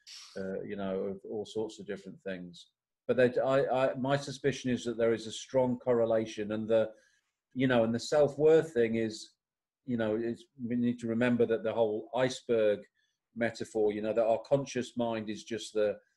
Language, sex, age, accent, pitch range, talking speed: English, male, 40-59, British, 105-120 Hz, 195 wpm